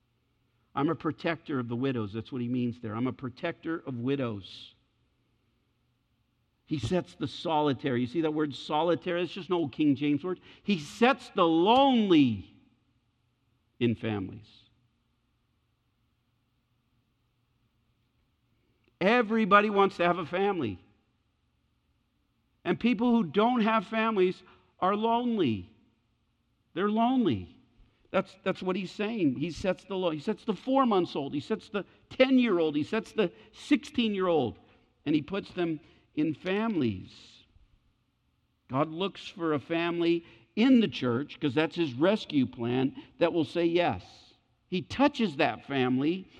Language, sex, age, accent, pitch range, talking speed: English, male, 50-69, American, 120-200 Hz, 125 wpm